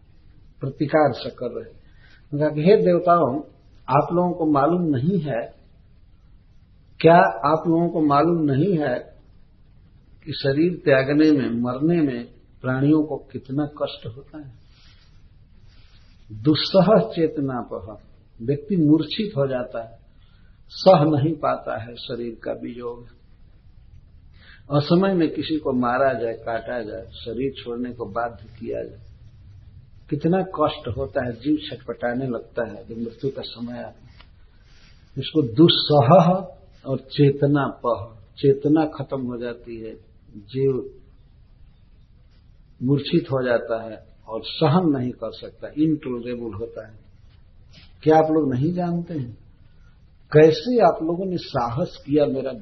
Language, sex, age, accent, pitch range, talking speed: Hindi, male, 60-79, native, 110-150 Hz, 120 wpm